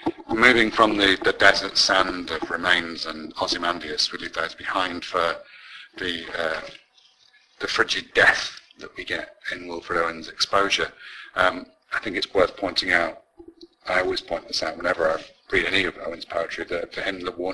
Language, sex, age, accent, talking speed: English, male, 50-69, British, 180 wpm